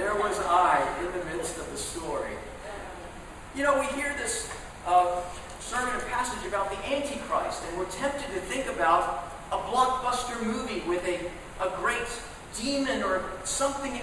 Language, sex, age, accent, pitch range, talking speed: English, male, 40-59, American, 205-270 Hz, 160 wpm